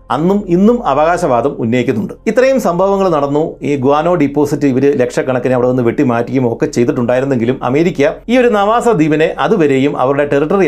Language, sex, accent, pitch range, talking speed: Malayalam, male, native, 135-185 Hz, 135 wpm